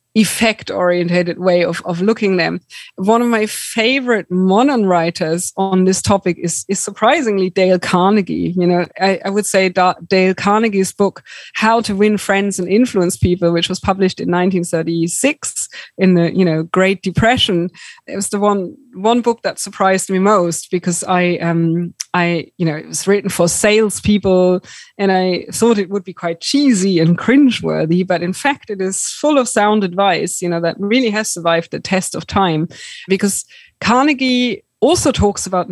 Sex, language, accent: female, English, German